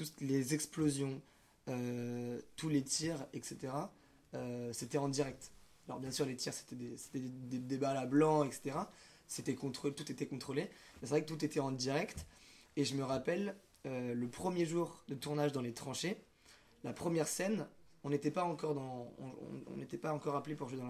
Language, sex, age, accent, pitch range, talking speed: French, male, 20-39, French, 130-150 Hz, 190 wpm